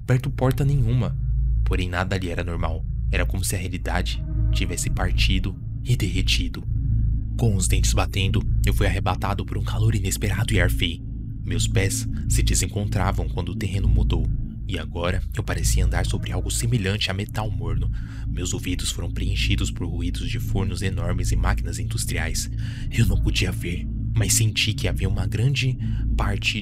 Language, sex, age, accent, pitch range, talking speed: Portuguese, male, 20-39, Brazilian, 95-115 Hz, 165 wpm